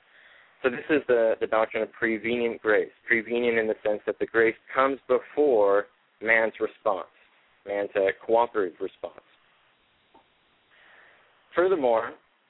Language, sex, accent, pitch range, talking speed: English, male, American, 115-155 Hz, 120 wpm